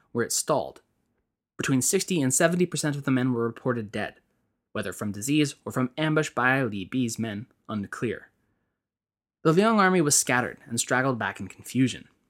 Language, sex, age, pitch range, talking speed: English, male, 20-39, 120-170 Hz, 165 wpm